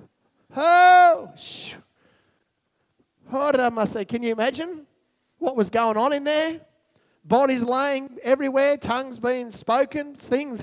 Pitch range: 260-320 Hz